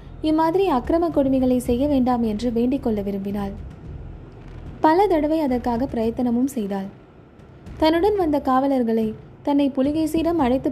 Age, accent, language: 20-39, native, Tamil